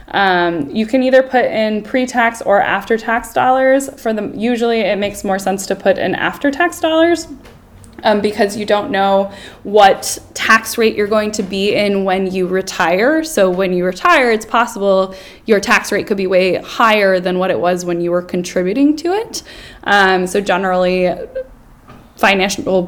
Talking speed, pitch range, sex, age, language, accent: 170 wpm, 190-230 Hz, female, 10-29, English, American